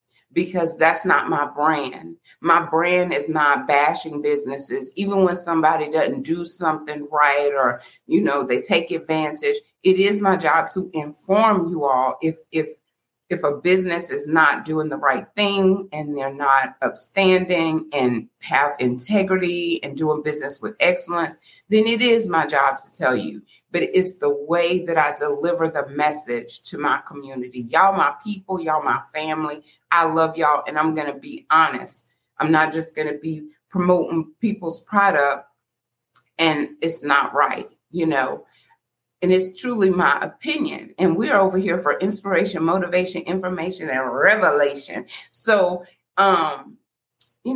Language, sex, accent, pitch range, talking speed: English, female, American, 145-185 Hz, 155 wpm